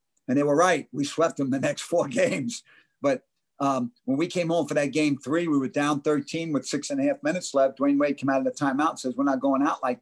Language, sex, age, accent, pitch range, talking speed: English, male, 50-69, American, 135-170 Hz, 275 wpm